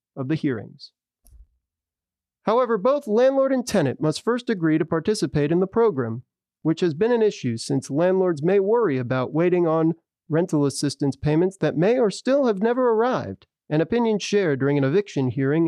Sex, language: male, English